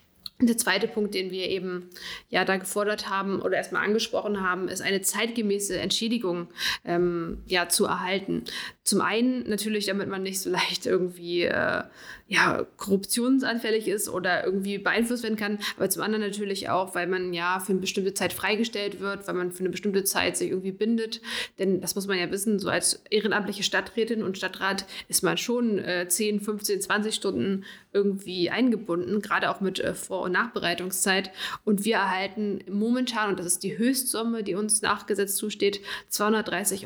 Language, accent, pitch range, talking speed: German, German, 185-215 Hz, 170 wpm